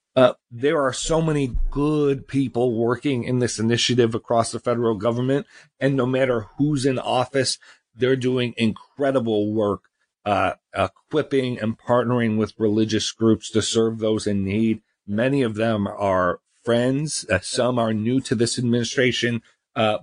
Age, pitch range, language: 40-59, 110-130 Hz, English